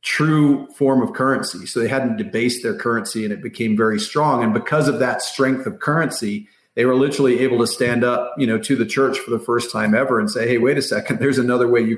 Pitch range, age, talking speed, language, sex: 115-135 Hz, 40-59, 245 wpm, English, male